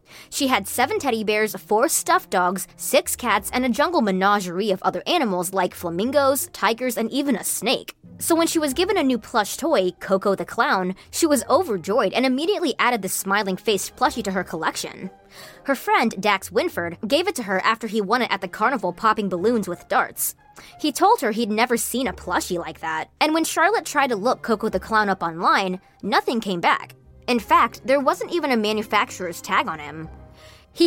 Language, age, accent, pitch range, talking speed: English, 20-39, American, 190-280 Hz, 200 wpm